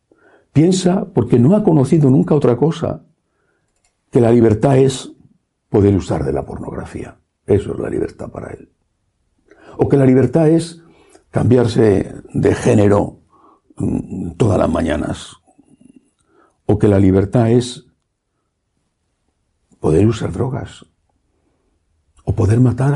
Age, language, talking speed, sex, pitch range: 60-79, Spanish, 120 wpm, male, 105-150 Hz